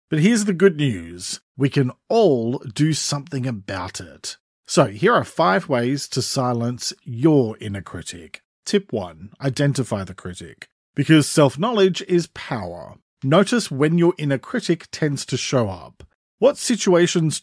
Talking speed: 145 wpm